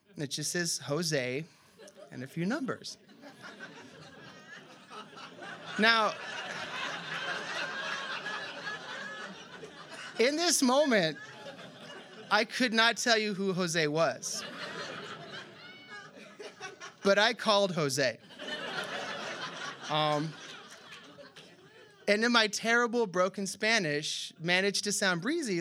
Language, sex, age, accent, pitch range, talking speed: English, male, 30-49, American, 155-210 Hz, 85 wpm